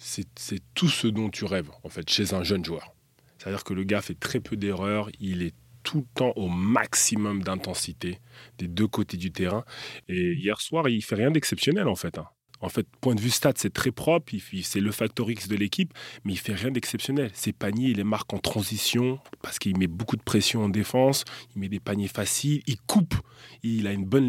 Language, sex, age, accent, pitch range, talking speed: French, male, 20-39, French, 95-125 Hz, 225 wpm